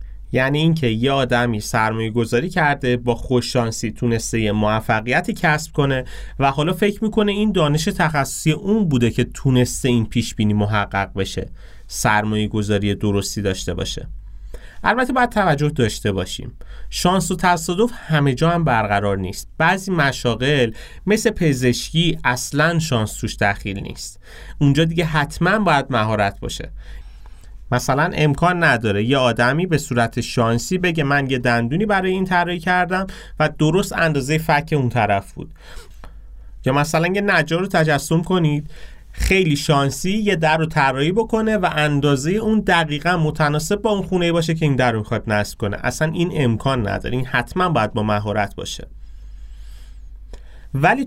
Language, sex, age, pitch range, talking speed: Persian, male, 30-49, 110-165 Hz, 145 wpm